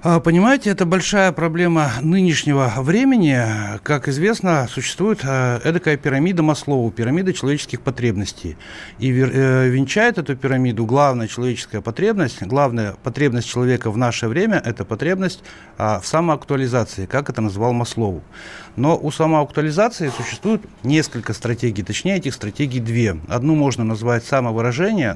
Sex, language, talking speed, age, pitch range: male, Russian, 120 wpm, 60-79, 115-155 Hz